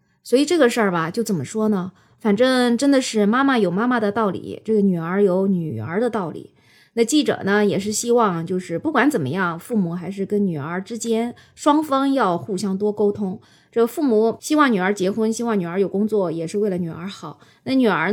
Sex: female